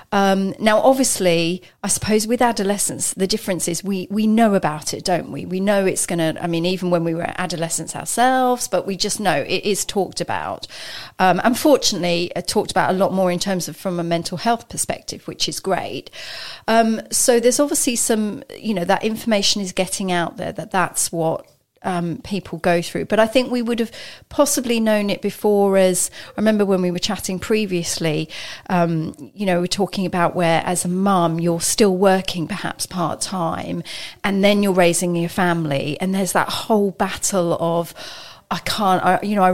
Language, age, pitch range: English, 40-59, 175-210 Hz